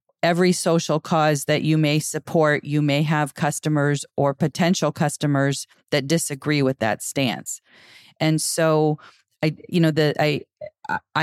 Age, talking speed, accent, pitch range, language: 40-59, 135 wpm, American, 145-165 Hz, English